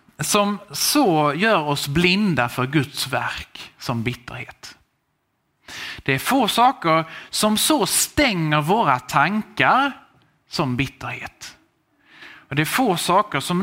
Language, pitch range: Swedish, 135-205 Hz